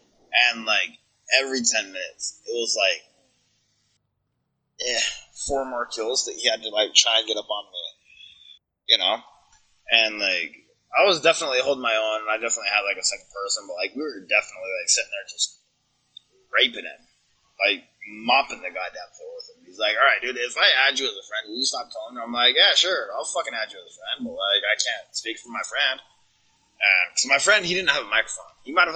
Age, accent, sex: 20-39, American, male